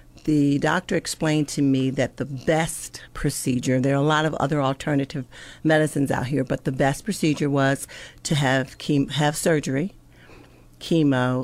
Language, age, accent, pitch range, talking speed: English, 50-69, American, 135-155 Hz, 155 wpm